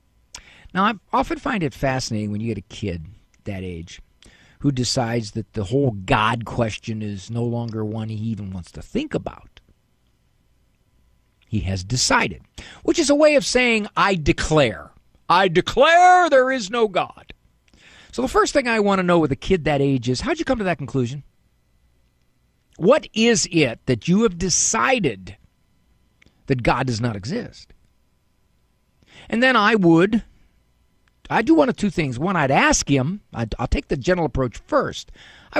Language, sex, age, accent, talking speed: English, male, 50-69, American, 170 wpm